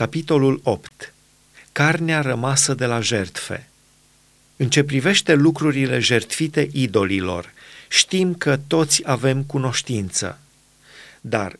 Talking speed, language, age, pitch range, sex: 100 wpm, Romanian, 40-59, 120-155 Hz, male